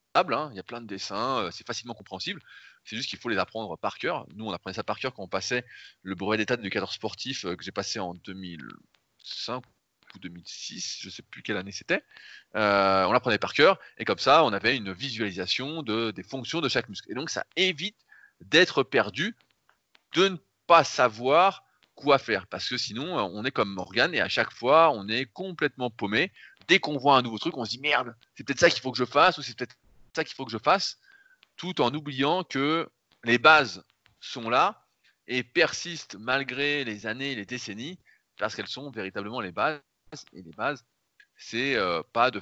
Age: 20-39